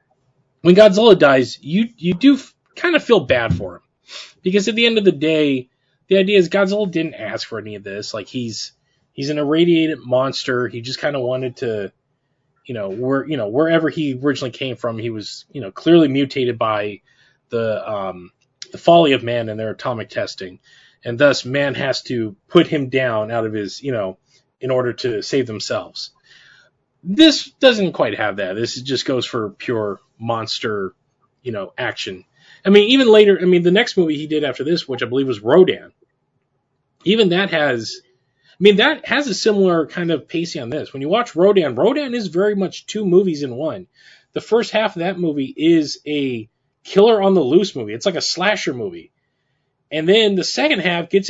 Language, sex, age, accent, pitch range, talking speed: English, male, 20-39, American, 130-195 Hz, 195 wpm